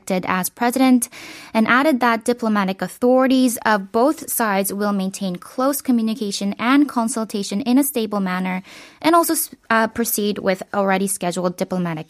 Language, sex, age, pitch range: Korean, female, 20-39, 195-245 Hz